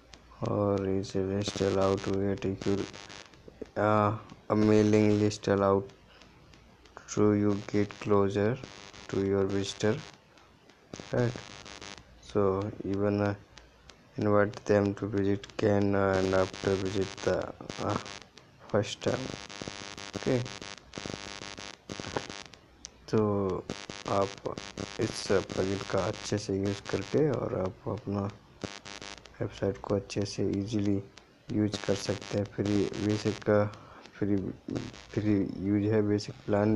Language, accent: Hindi, native